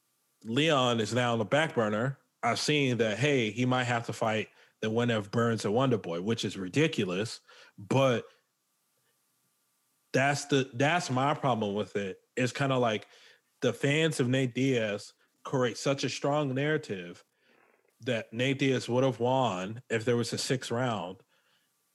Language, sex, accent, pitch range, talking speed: English, male, American, 115-145 Hz, 160 wpm